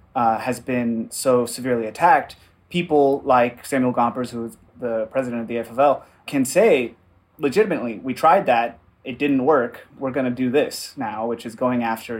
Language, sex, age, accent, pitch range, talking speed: English, male, 30-49, American, 115-140 Hz, 175 wpm